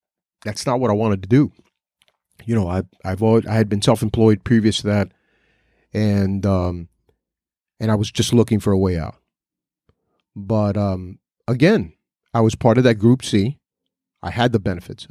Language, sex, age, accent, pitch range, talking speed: English, male, 40-59, American, 95-125 Hz, 175 wpm